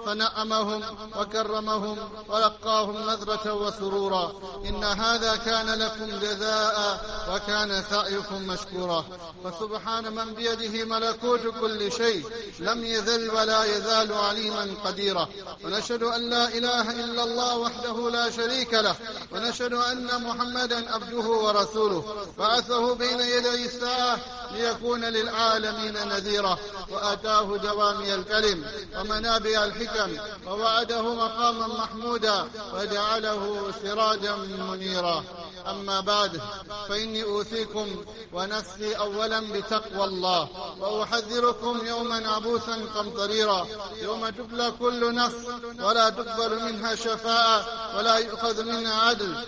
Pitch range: 205-230 Hz